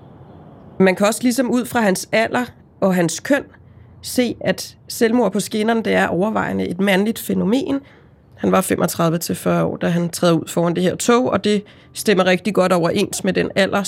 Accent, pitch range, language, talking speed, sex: native, 170-220 Hz, Danish, 190 wpm, female